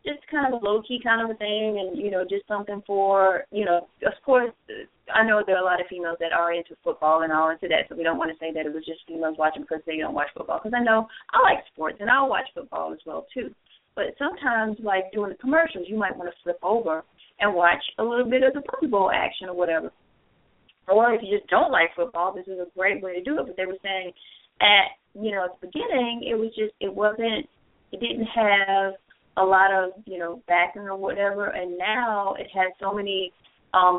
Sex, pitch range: female, 170-210 Hz